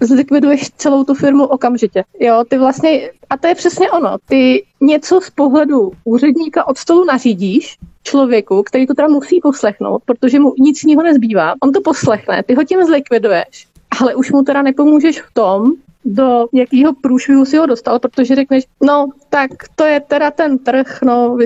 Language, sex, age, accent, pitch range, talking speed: Czech, female, 30-49, native, 230-280 Hz, 175 wpm